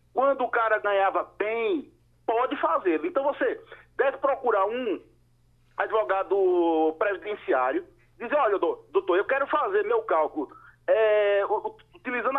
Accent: Brazilian